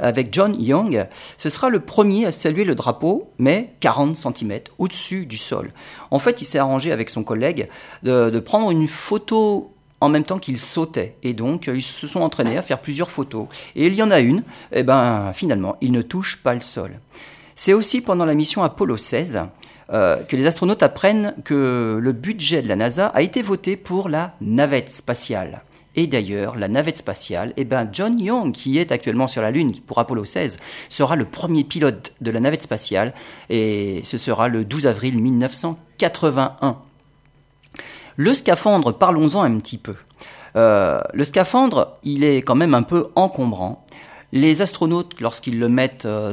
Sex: male